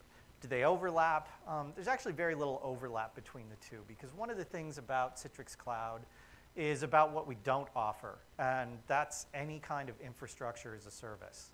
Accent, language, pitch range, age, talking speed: American, English, 120-155 Hz, 40-59, 180 wpm